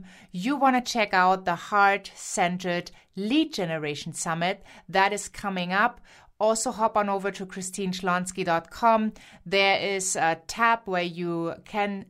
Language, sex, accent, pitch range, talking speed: English, female, German, 175-210 Hz, 140 wpm